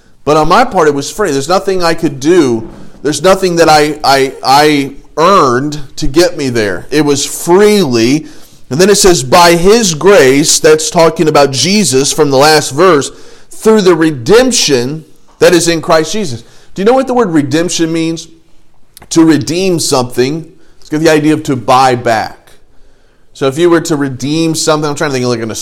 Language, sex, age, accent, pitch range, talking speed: English, male, 40-59, American, 135-175 Hz, 195 wpm